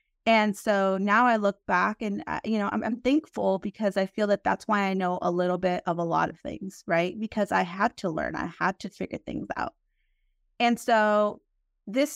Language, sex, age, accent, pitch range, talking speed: English, female, 30-49, American, 195-235 Hz, 210 wpm